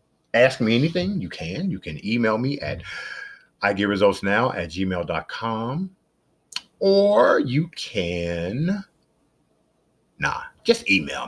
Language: English